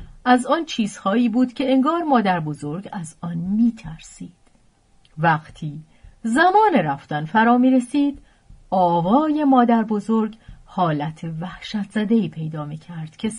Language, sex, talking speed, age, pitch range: Persian, female, 120 wpm, 40-59, 165-255 Hz